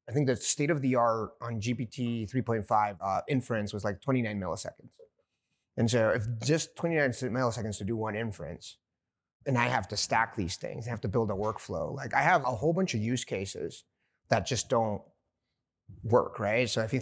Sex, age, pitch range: male, 30-49, 105-125 Hz